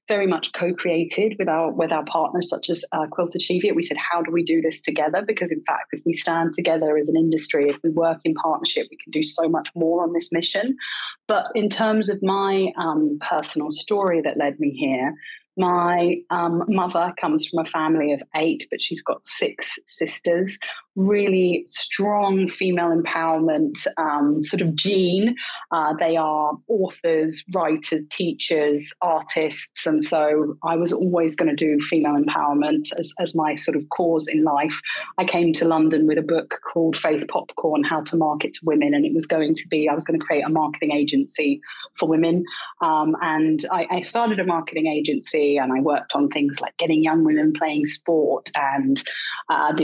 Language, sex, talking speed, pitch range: English, female, 190 wpm, 155-180 Hz